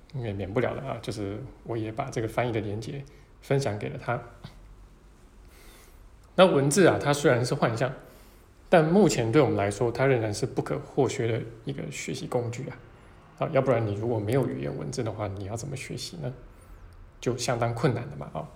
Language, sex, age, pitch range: Chinese, male, 20-39, 105-130 Hz